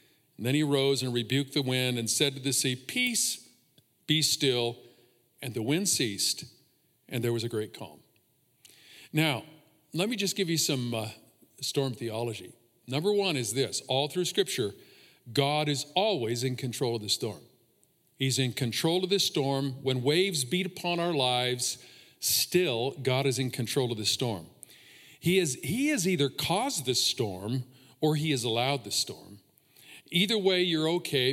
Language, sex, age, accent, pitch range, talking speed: English, male, 50-69, American, 130-175 Hz, 170 wpm